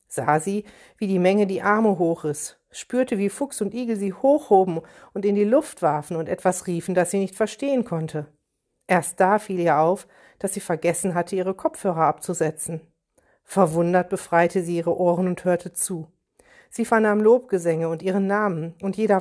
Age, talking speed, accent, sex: 50-69, 175 wpm, German, female